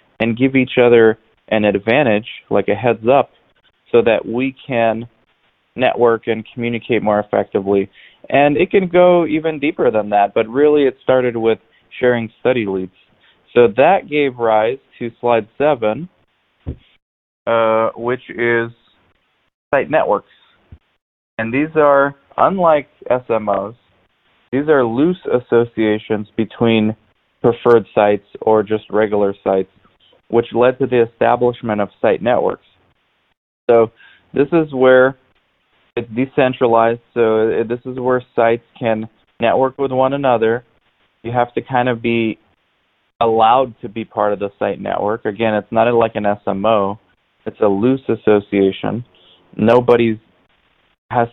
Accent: American